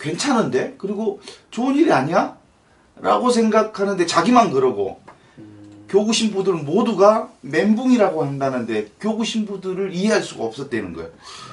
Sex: male